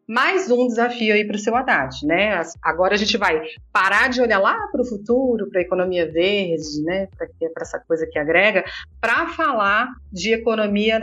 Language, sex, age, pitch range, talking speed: Portuguese, female, 40-59, 170-220 Hz, 185 wpm